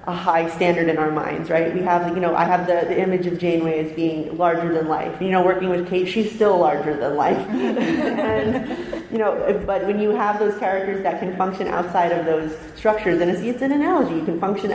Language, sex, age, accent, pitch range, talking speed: English, female, 30-49, American, 165-195 Hz, 230 wpm